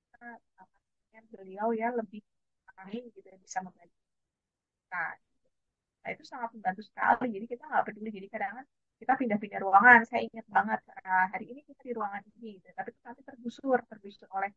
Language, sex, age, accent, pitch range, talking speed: Indonesian, female, 20-39, native, 195-235 Hz, 170 wpm